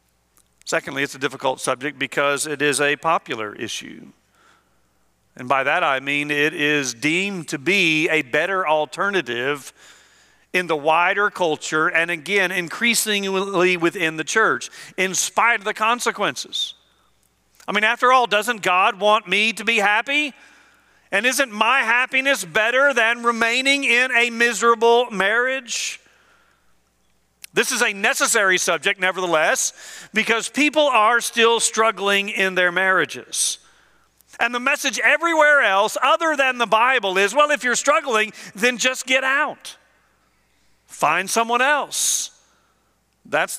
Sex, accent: male, American